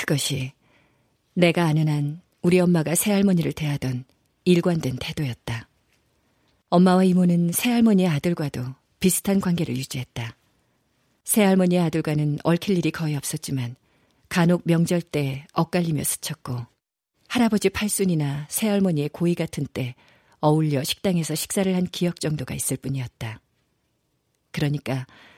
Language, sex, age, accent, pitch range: Korean, female, 40-59, native, 130-175 Hz